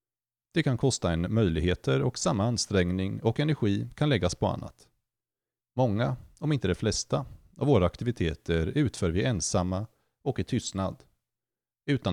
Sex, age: male, 30-49